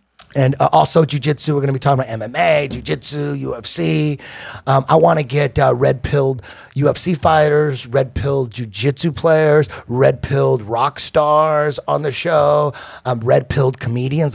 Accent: American